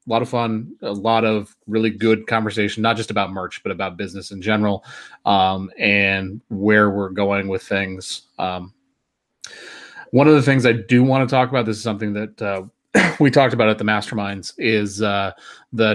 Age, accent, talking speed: 30-49, American, 190 wpm